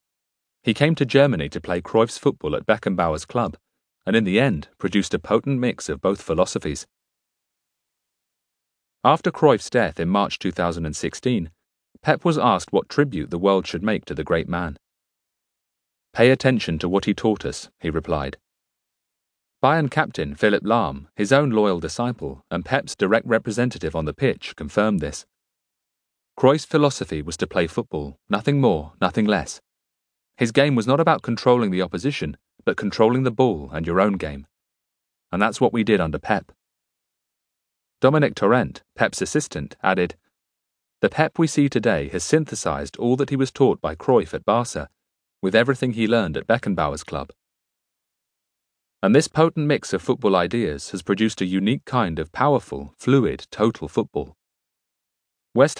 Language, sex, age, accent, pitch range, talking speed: English, male, 40-59, British, 90-130 Hz, 155 wpm